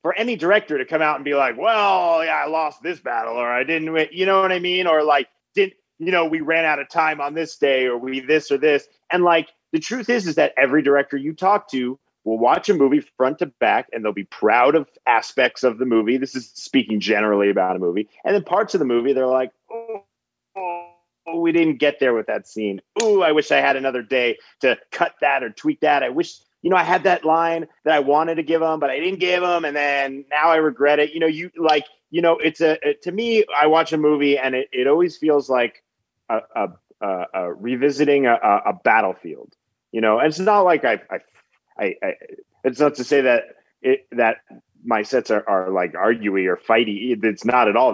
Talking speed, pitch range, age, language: 235 wpm, 130-175 Hz, 30-49, English